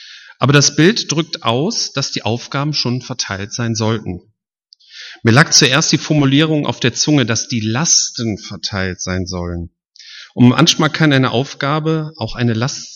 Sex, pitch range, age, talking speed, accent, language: male, 105-155 Hz, 40-59, 160 wpm, German, German